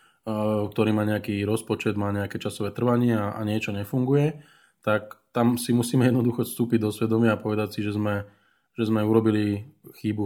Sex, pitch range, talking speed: male, 100-115 Hz, 170 wpm